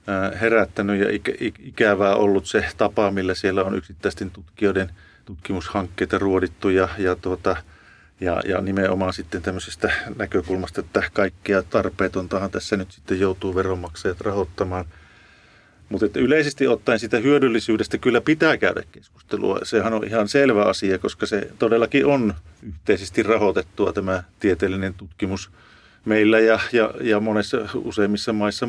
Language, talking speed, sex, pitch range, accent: Finnish, 130 wpm, male, 95-120 Hz, native